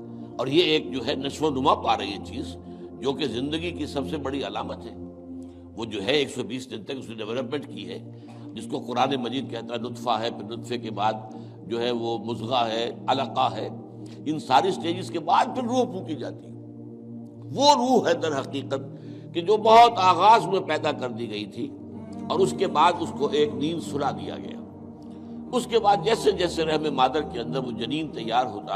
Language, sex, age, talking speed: Urdu, male, 60-79, 215 wpm